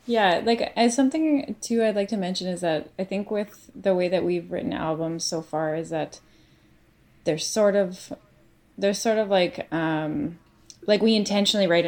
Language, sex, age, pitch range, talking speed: English, female, 20-39, 155-190 Hz, 175 wpm